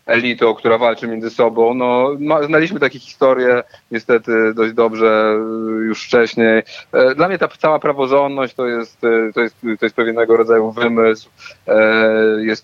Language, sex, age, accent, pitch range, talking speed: Polish, male, 30-49, native, 115-155 Hz, 140 wpm